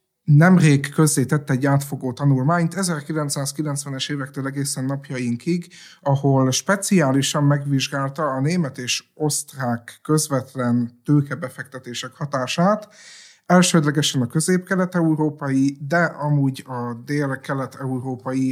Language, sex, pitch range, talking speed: Hungarian, male, 130-155 Hz, 85 wpm